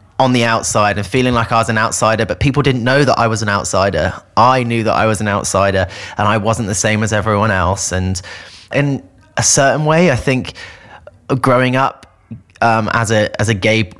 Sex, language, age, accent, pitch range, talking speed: male, English, 30-49, British, 100-120 Hz, 210 wpm